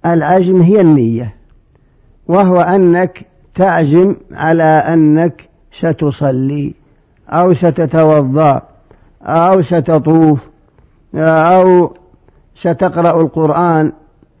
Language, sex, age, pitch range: Arabic, male, 50-69, 155-175 Hz